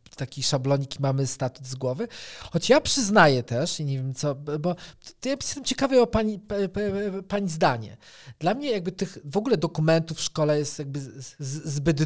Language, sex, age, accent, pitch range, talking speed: Polish, male, 40-59, native, 150-200 Hz, 175 wpm